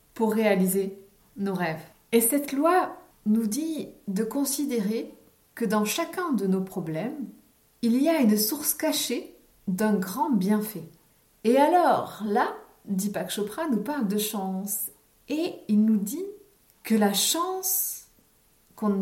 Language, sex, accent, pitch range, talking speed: French, female, French, 200-270 Hz, 135 wpm